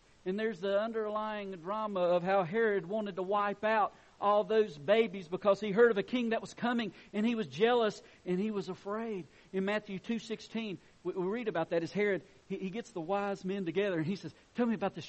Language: English